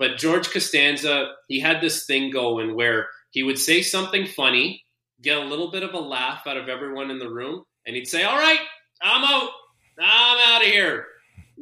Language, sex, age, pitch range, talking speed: English, male, 30-49, 125-180 Hz, 195 wpm